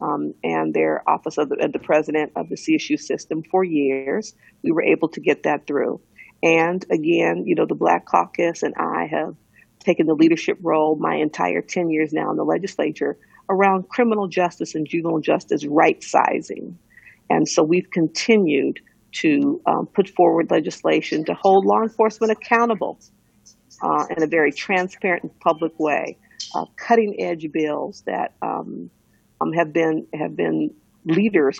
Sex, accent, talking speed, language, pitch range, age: female, American, 160 wpm, English, 155-210 Hz, 50-69